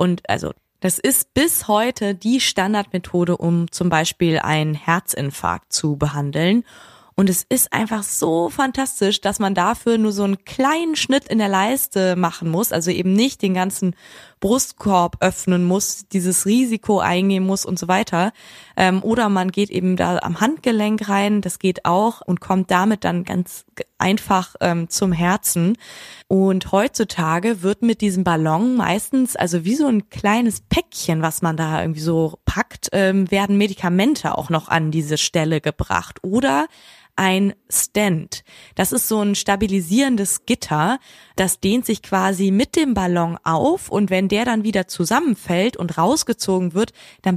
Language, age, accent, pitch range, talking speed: German, 20-39, German, 175-220 Hz, 155 wpm